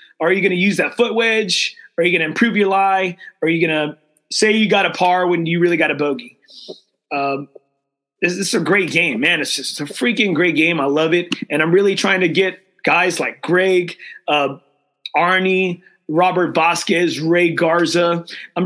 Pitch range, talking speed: 160-195 Hz, 205 wpm